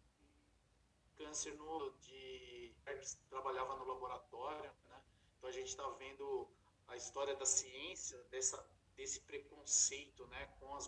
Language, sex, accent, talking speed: Portuguese, male, Brazilian, 120 wpm